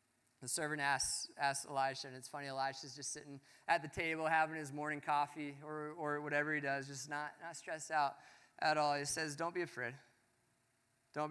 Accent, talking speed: American, 190 wpm